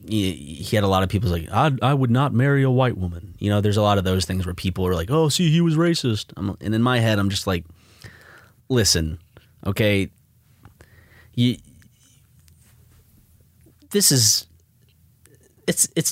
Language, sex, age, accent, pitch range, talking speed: English, male, 30-49, American, 100-130 Hz, 170 wpm